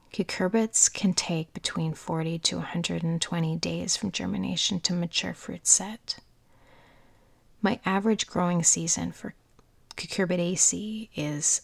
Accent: American